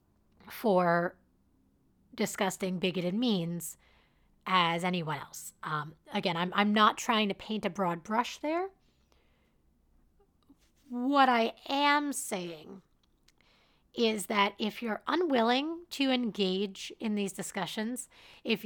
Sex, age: female, 30-49